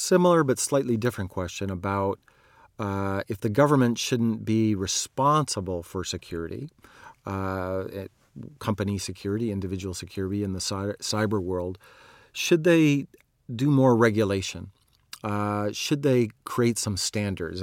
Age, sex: 40-59, male